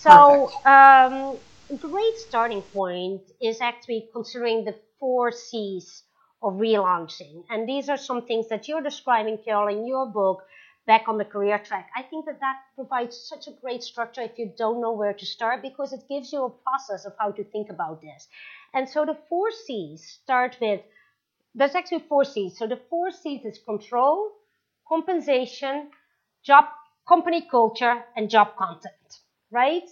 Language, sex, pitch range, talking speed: English, female, 205-290 Hz, 170 wpm